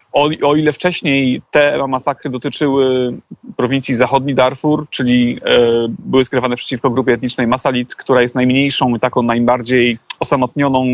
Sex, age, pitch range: male, 30-49, 120-140 Hz